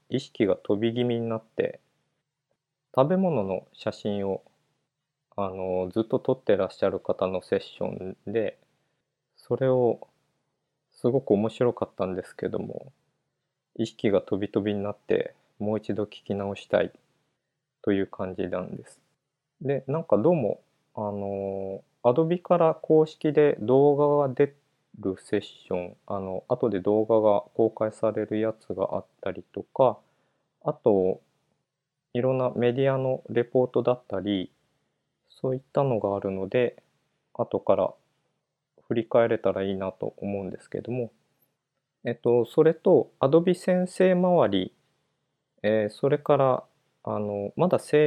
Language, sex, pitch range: Japanese, male, 105-145 Hz